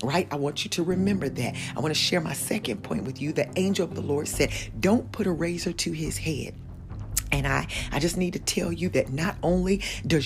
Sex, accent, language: female, American, English